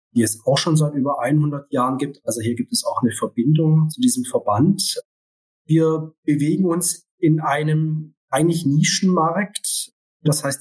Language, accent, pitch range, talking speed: German, German, 130-165 Hz, 160 wpm